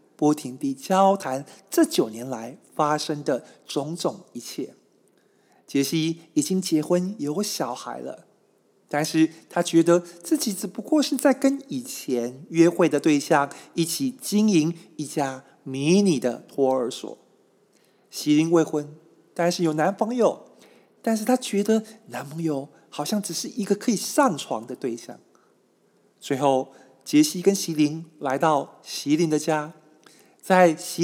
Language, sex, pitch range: Chinese, male, 145-200 Hz